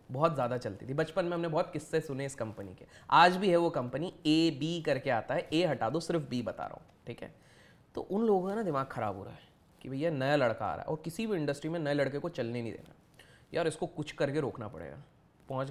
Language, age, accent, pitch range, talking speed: Hindi, 20-39, native, 130-190 Hz, 260 wpm